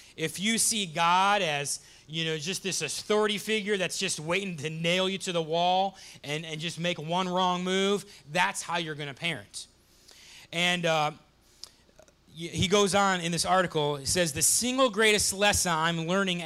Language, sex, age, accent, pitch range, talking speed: English, male, 30-49, American, 135-185 Hz, 180 wpm